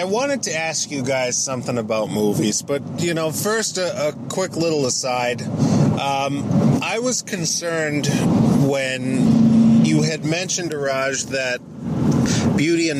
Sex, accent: male, American